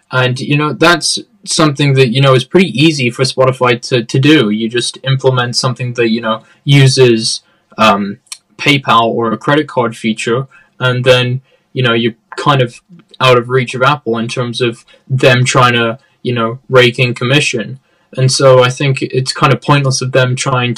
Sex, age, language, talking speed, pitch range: male, 10-29, English, 190 wpm, 120-150 Hz